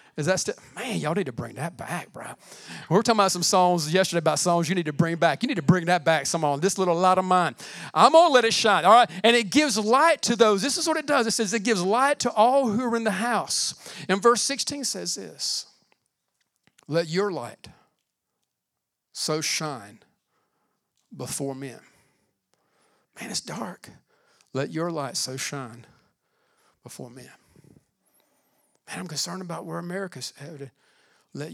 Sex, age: male, 40-59